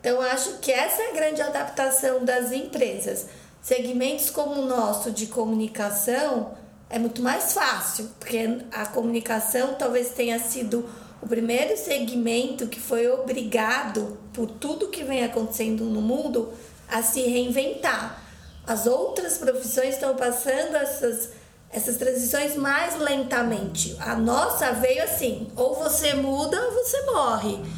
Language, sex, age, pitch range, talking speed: Portuguese, female, 20-39, 230-275 Hz, 135 wpm